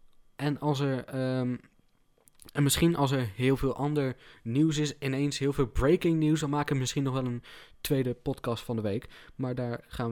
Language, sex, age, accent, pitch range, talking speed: Dutch, male, 20-39, Dutch, 120-150 Hz, 195 wpm